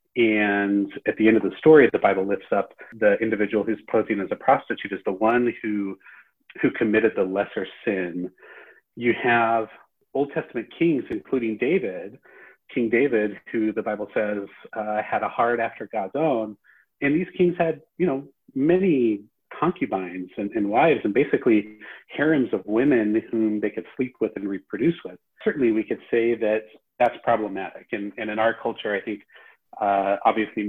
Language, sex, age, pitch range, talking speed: English, male, 30-49, 100-115 Hz, 170 wpm